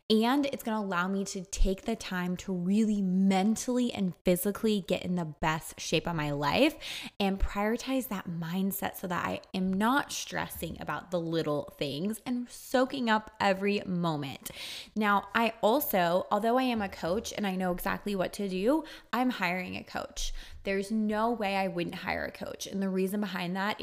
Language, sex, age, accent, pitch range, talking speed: English, female, 20-39, American, 175-220 Hz, 185 wpm